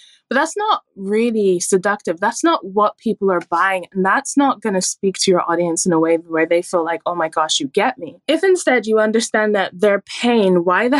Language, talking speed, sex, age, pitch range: English, 230 wpm, female, 10-29, 180-230 Hz